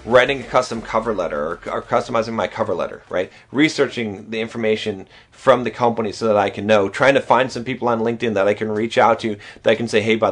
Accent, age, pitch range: American, 30-49, 110-145 Hz